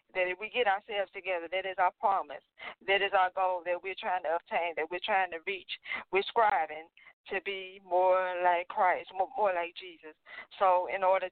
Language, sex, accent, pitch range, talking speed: English, female, American, 170-200 Hz, 195 wpm